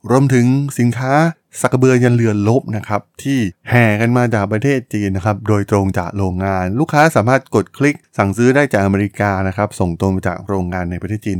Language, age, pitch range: Thai, 20-39, 95-125 Hz